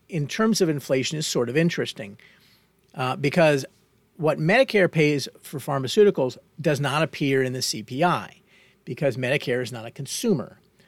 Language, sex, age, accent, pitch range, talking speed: English, male, 50-69, American, 130-170 Hz, 150 wpm